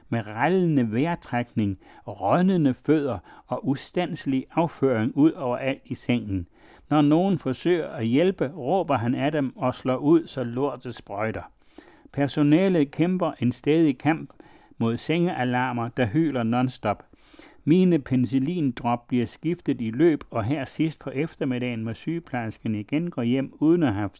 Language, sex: Danish, male